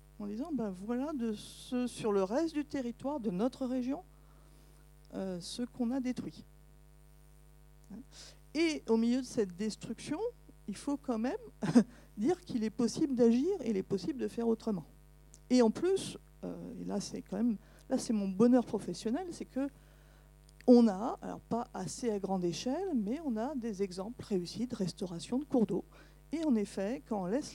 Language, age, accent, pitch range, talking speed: French, 50-69, French, 185-250 Hz, 170 wpm